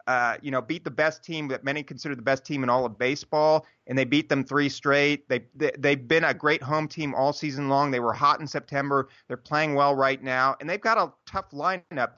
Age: 30-49